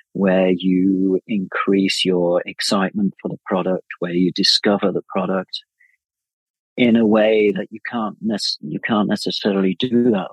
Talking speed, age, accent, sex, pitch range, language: 130 wpm, 40-59, British, male, 95-110 Hz, English